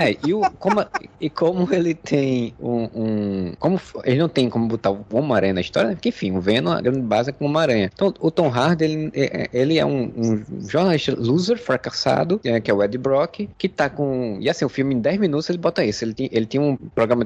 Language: Portuguese